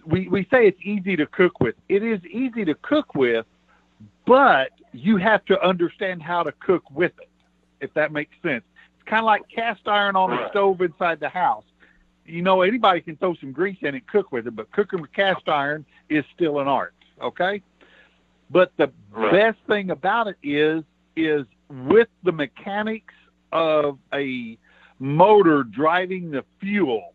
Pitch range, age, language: 140-195 Hz, 50-69, English